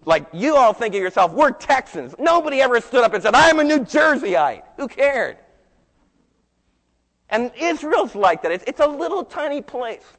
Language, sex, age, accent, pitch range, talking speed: English, male, 40-59, American, 145-215 Hz, 170 wpm